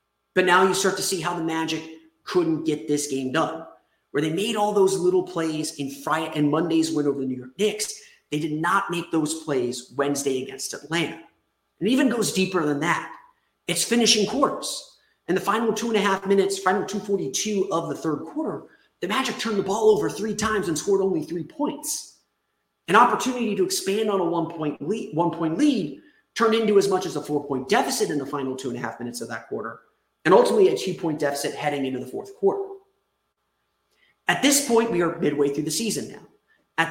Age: 30-49